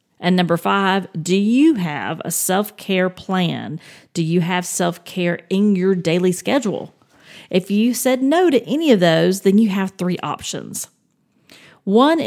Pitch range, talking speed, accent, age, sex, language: 185-235 Hz, 150 wpm, American, 40-59, female, English